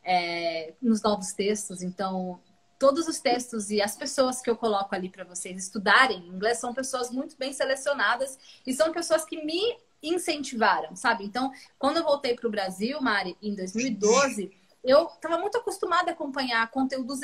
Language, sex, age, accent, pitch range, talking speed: Portuguese, female, 20-39, Brazilian, 230-330 Hz, 165 wpm